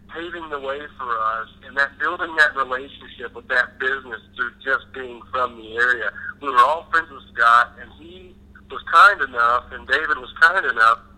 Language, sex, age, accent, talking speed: English, male, 50-69, American, 190 wpm